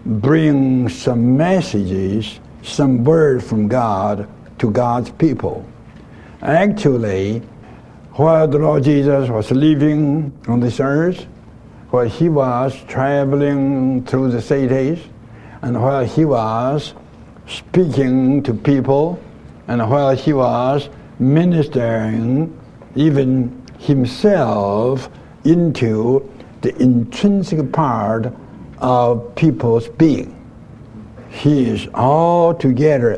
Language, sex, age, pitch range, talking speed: English, male, 60-79, 115-150 Hz, 90 wpm